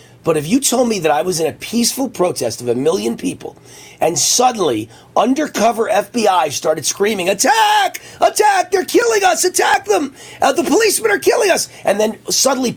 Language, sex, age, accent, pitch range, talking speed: English, male, 40-59, American, 190-280 Hz, 180 wpm